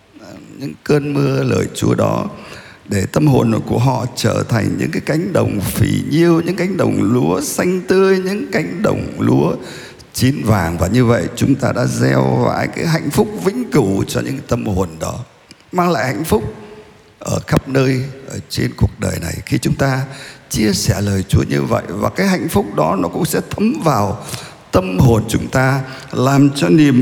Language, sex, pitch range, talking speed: Vietnamese, male, 110-165 Hz, 195 wpm